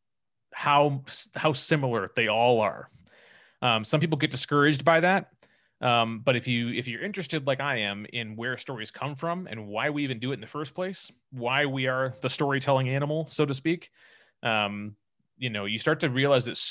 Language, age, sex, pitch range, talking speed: English, 30-49, male, 115-145 Hz, 200 wpm